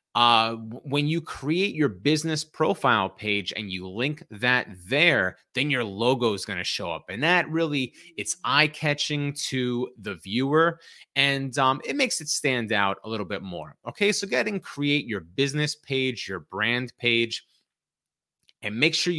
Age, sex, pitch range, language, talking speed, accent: 30-49, male, 120-150 Hz, English, 170 wpm, American